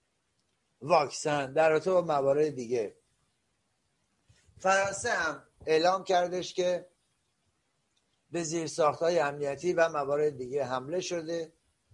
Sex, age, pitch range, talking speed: male, 60-79, 140-180 Hz, 95 wpm